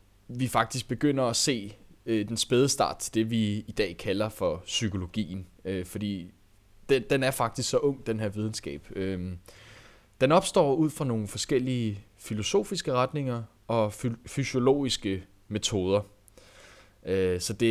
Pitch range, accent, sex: 100-135 Hz, native, male